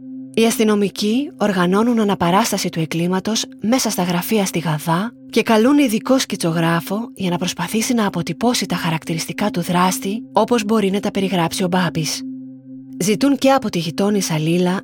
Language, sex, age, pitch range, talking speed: Greek, female, 20-39, 175-225 Hz, 150 wpm